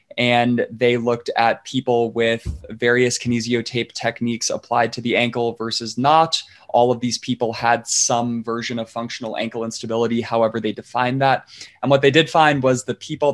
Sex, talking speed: male, 175 wpm